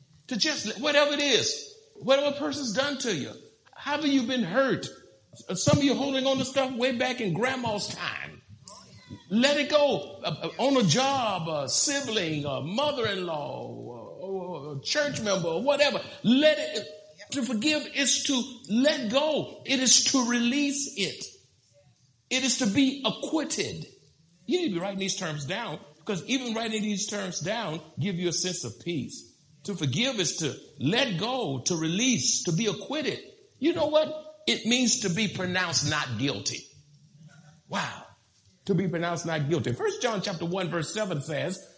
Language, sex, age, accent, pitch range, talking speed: English, male, 60-79, American, 175-260 Hz, 165 wpm